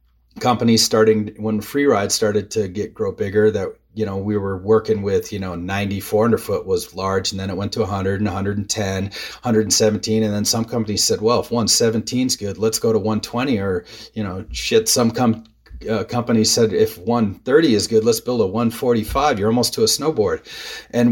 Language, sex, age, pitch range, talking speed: English, male, 30-49, 95-115 Hz, 200 wpm